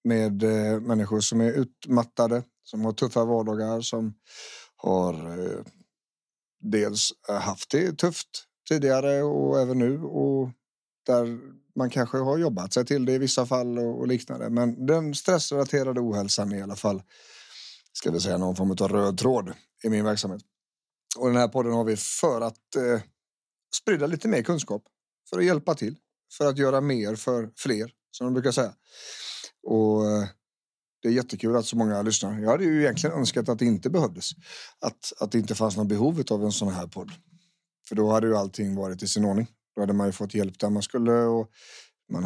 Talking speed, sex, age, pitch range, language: 180 wpm, male, 30-49, 105-130 Hz, English